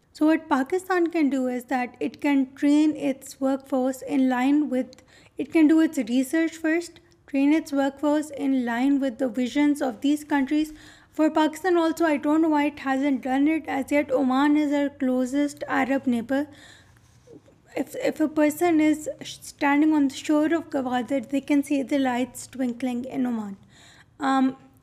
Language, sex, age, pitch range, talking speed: Urdu, female, 20-39, 265-305 Hz, 170 wpm